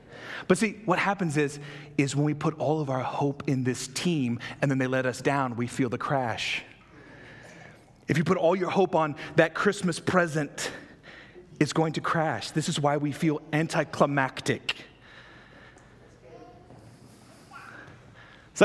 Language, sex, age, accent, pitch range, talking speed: English, male, 30-49, American, 145-210 Hz, 150 wpm